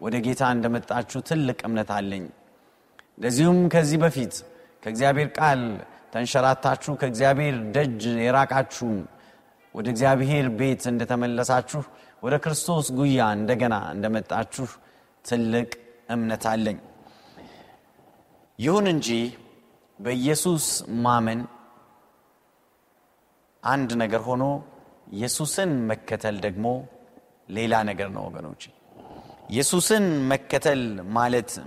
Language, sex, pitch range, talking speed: Amharic, male, 120-165 Hz, 55 wpm